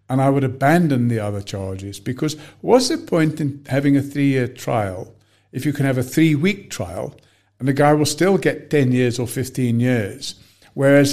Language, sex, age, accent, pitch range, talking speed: English, male, 60-79, British, 115-145 Hz, 190 wpm